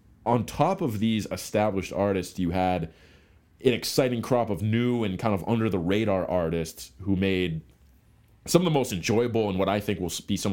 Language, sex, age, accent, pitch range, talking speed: English, male, 30-49, American, 90-110 Hz, 180 wpm